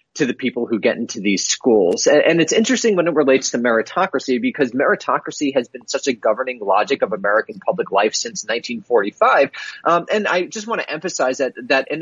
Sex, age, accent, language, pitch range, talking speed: male, 30-49, American, English, 110-180 Hz, 205 wpm